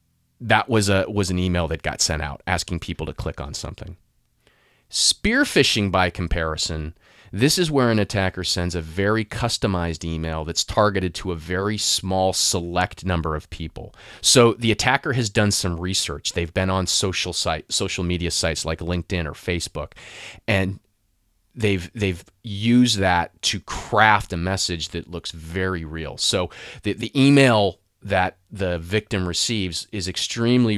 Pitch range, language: 85-105 Hz, English